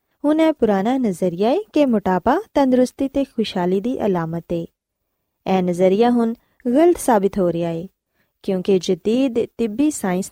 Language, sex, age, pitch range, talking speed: Punjabi, female, 20-39, 185-270 Hz, 145 wpm